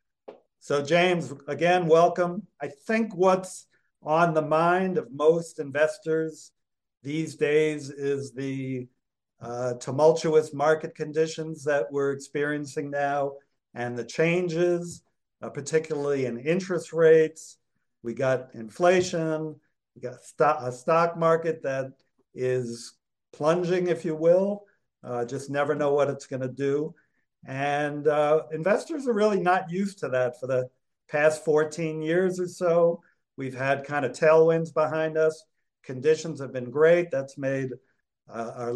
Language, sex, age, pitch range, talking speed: English, male, 50-69, 135-165 Hz, 135 wpm